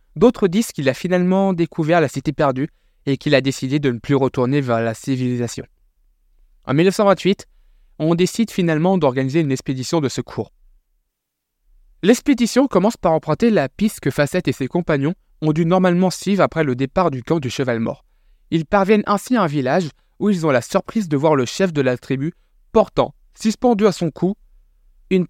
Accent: French